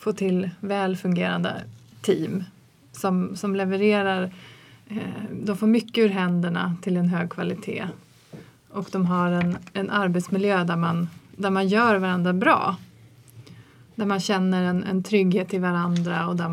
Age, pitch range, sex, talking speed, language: 30-49, 175-200 Hz, female, 145 wpm, Swedish